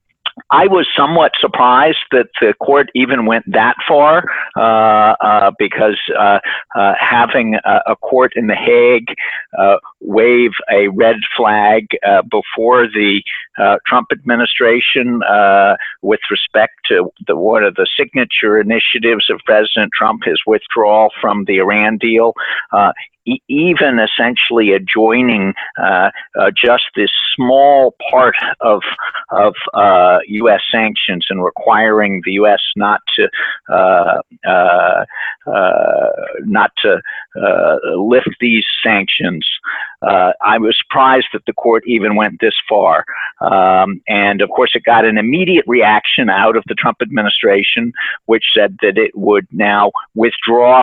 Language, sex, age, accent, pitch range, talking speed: English, male, 50-69, American, 105-140 Hz, 135 wpm